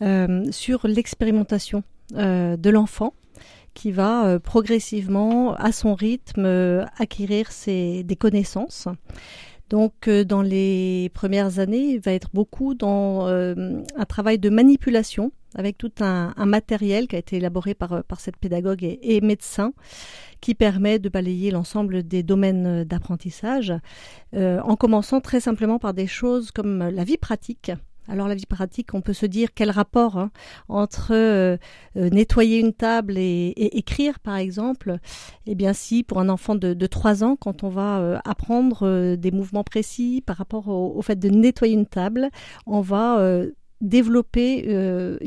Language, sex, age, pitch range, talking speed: French, female, 40-59, 190-225 Hz, 165 wpm